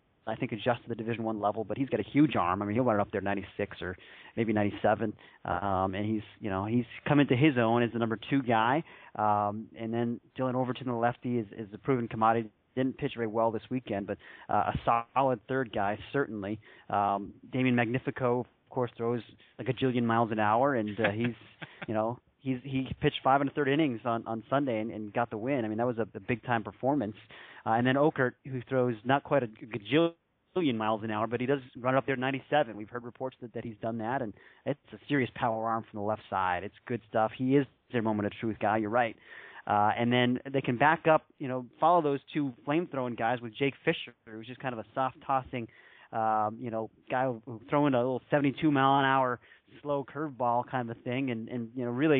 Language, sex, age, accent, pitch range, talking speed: English, male, 30-49, American, 110-135 Hz, 225 wpm